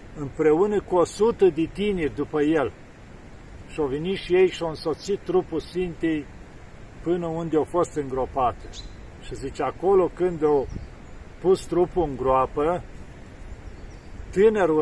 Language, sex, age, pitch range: Romanian, male, 50-69, 135-175 Hz